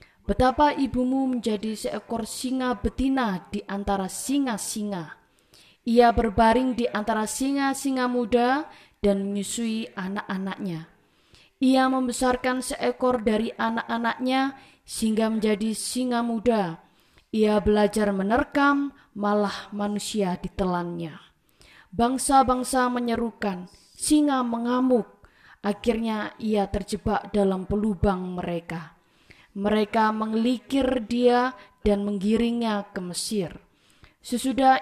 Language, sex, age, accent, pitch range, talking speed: Indonesian, female, 20-39, native, 200-245 Hz, 90 wpm